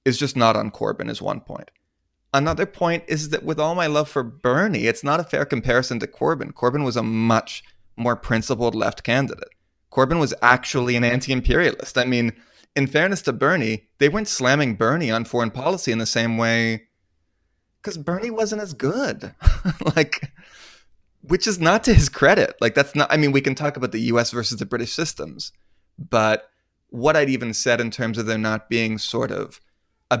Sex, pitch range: male, 110-140 Hz